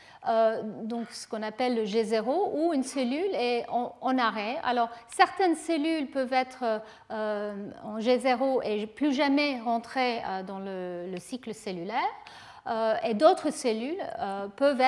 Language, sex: French, female